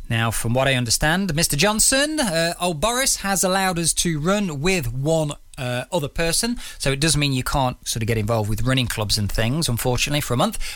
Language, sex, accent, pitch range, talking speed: English, male, British, 120-165 Hz, 225 wpm